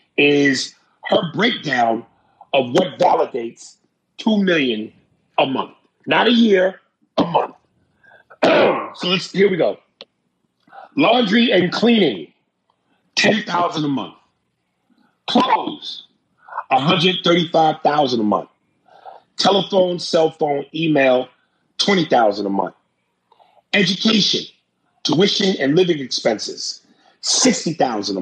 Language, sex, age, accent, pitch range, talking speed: English, male, 40-59, American, 135-190 Hz, 90 wpm